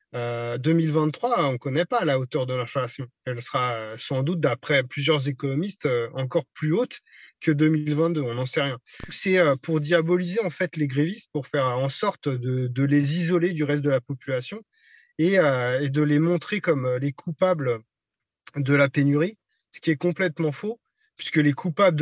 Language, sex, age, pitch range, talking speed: French, male, 30-49, 135-165 Hz, 180 wpm